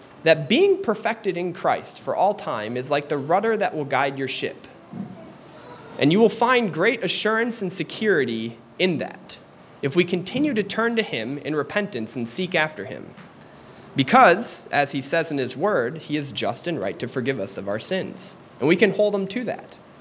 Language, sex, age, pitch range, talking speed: English, male, 20-39, 135-190 Hz, 195 wpm